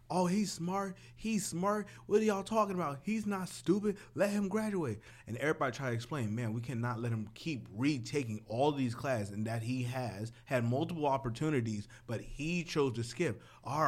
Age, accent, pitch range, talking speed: 30-49, American, 120-145 Hz, 190 wpm